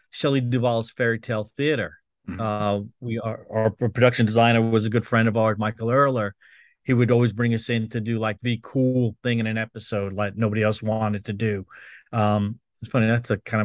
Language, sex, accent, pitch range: English, male, American, 110-125 Hz